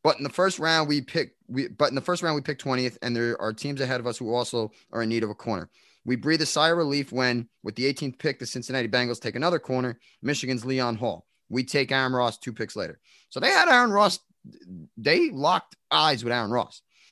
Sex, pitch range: male, 105-140 Hz